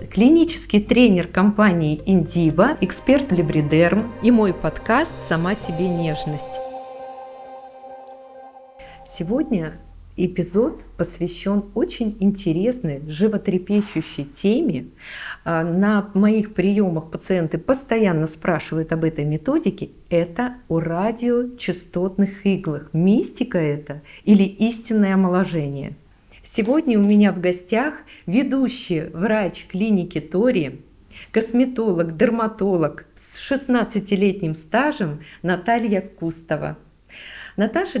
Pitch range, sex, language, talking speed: 170-245 Hz, female, Russian, 85 wpm